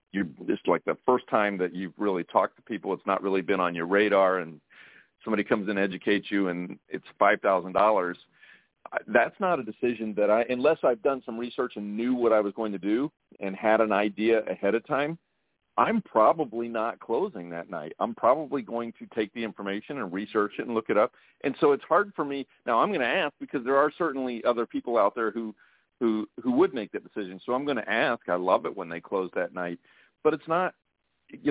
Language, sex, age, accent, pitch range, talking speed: English, male, 40-59, American, 100-135 Hz, 225 wpm